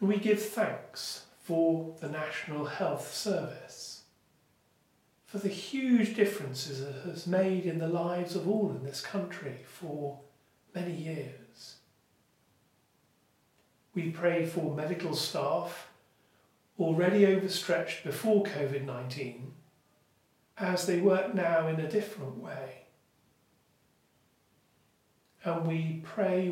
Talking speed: 105 wpm